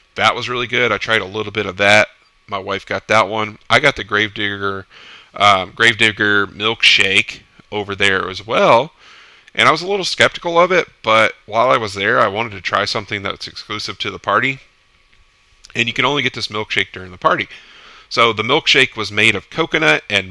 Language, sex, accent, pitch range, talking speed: English, male, American, 100-125 Hz, 200 wpm